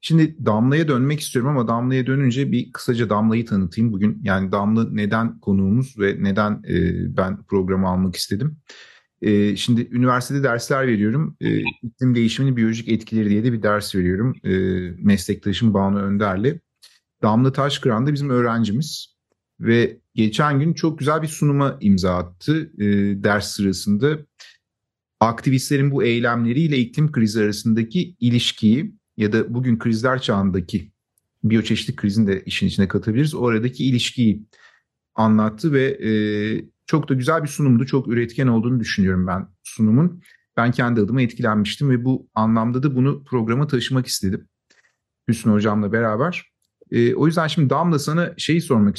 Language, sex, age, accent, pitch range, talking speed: Turkish, male, 40-59, native, 105-130 Hz, 135 wpm